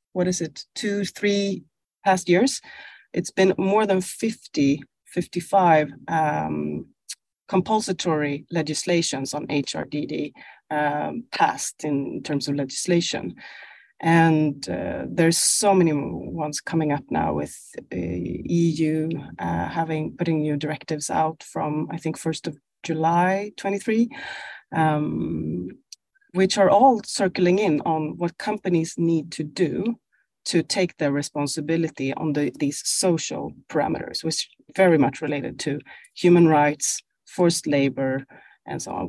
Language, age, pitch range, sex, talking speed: Swedish, 30-49, 150-185 Hz, female, 125 wpm